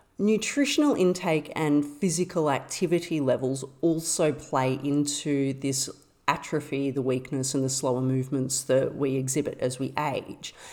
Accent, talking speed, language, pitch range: Australian, 130 wpm, English, 135-175 Hz